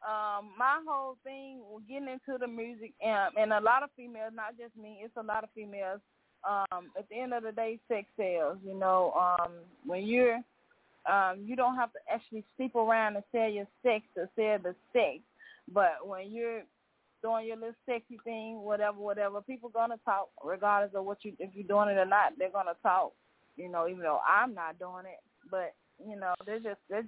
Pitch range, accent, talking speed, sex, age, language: 195-235 Hz, American, 210 wpm, female, 20-39, English